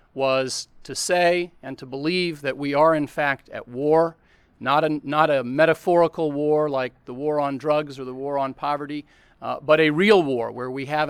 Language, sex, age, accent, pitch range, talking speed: English, male, 40-59, American, 135-170 Hz, 195 wpm